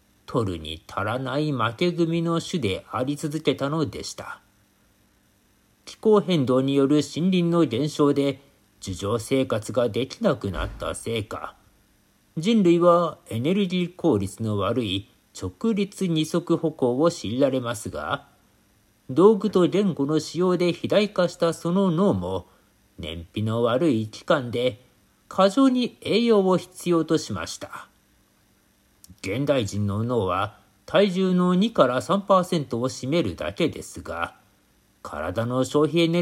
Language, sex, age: Japanese, male, 50-69